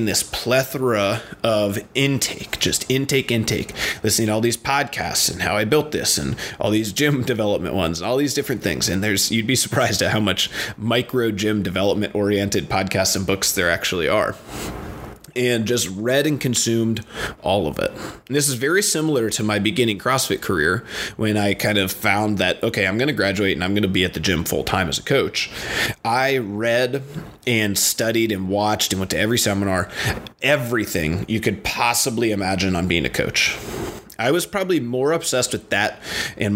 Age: 30-49